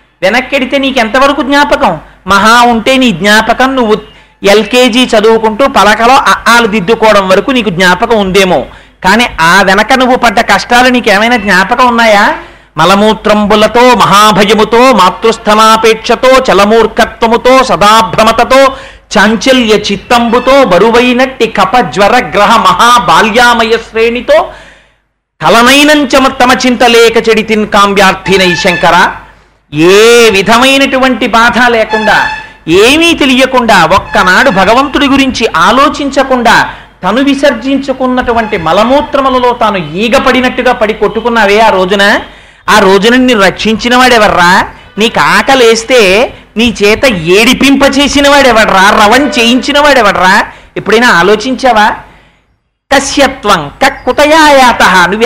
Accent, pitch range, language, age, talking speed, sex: native, 210-260 Hz, Telugu, 40-59, 90 wpm, male